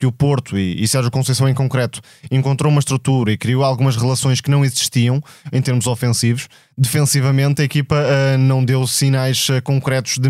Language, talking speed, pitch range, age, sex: Portuguese, 175 wpm, 130-145 Hz, 20-39, male